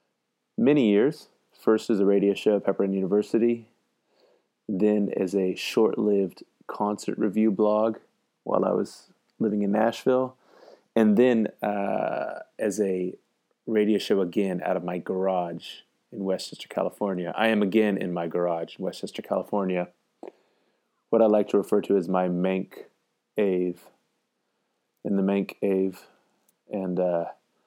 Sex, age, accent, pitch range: male, 30-49, American, 90-105 Hz